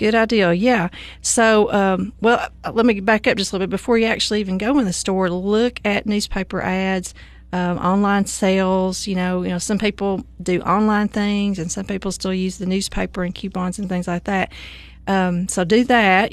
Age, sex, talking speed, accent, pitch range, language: 40-59, female, 200 wpm, American, 185-205 Hz, English